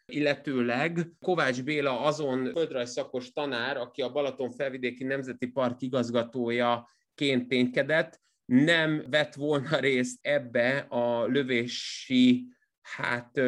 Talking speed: 100 wpm